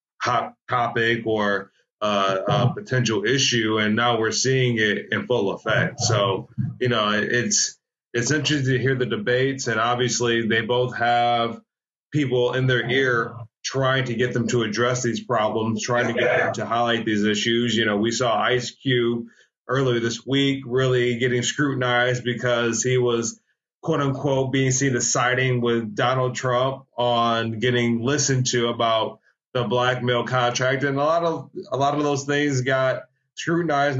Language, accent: English, American